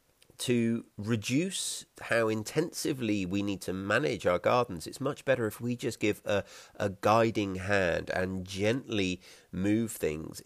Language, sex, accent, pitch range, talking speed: English, male, British, 85-105 Hz, 145 wpm